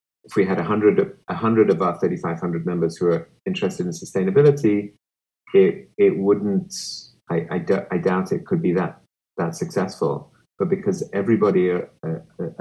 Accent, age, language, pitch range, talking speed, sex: British, 30-49, Italian, 80-110 Hz, 155 wpm, male